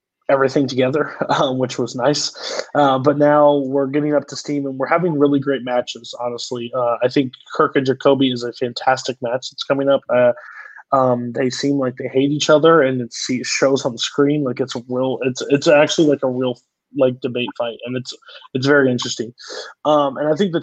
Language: English